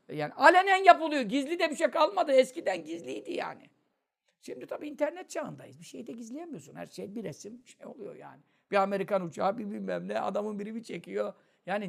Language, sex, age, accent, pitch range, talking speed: Turkish, male, 60-79, native, 180-250 Hz, 185 wpm